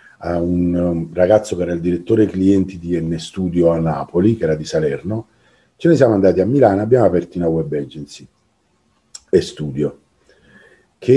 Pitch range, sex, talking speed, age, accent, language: 80-95 Hz, male, 165 wpm, 50-69, Italian, English